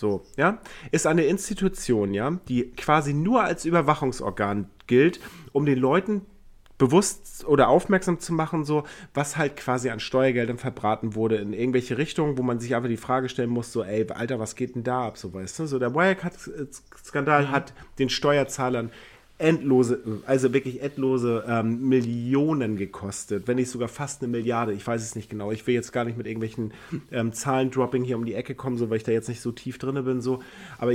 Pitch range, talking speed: 115-140 Hz, 195 wpm